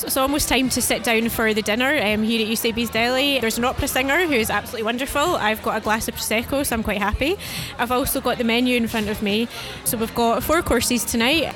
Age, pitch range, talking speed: 20-39, 225-260 Hz, 240 wpm